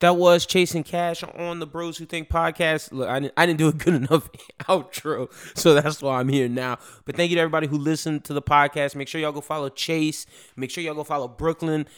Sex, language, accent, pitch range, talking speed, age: male, English, American, 130-155 Hz, 240 wpm, 20-39